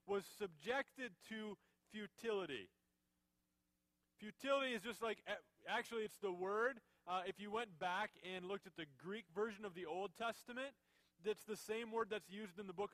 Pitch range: 175-220 Hz